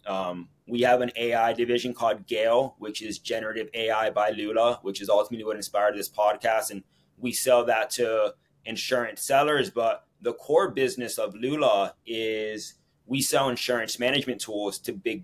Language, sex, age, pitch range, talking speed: English, male, 20-39, 120-145 Hz, 165 wpm